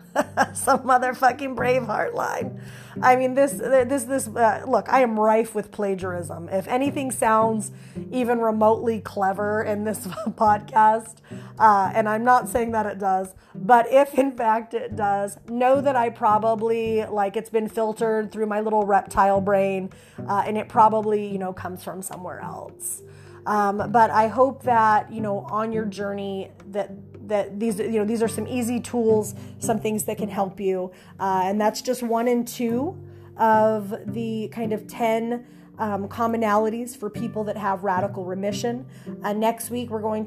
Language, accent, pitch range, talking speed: English, American, 210-245 Hz, 170 wpm